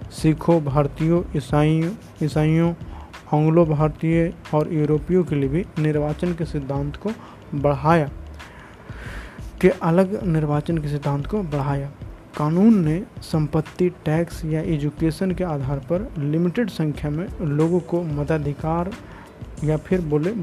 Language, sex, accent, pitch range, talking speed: Hindi, male, native, 145-170 Hz, 120 wpm